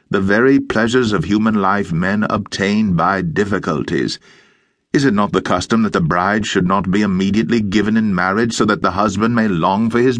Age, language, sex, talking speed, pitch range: 60-79, English, male, 195 wpm, 105-130 Hz